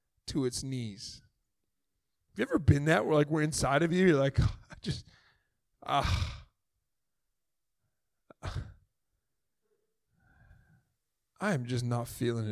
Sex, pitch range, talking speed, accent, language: male, 115-150 Hz, 110 wpm, American, English